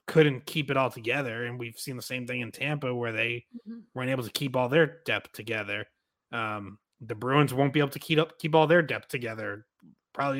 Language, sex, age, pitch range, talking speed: English, male, 20-39, 120-145 Hz, 220 wpm